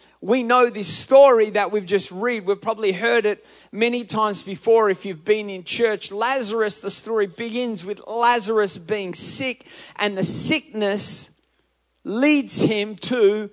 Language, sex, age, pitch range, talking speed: English, male, 30-49, 200-240 Hz, 150 wpm